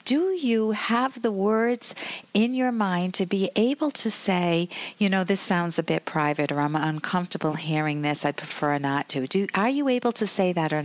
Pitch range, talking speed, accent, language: 160-230 Hz, 205 wpm, American, English